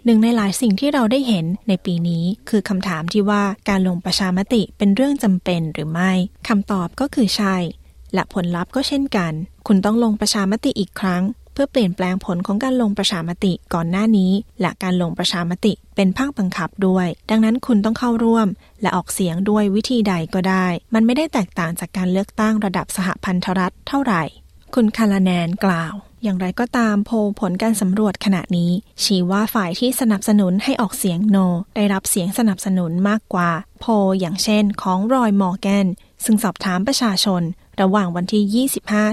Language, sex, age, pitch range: Thai, female, 20-39, 185-220 Hz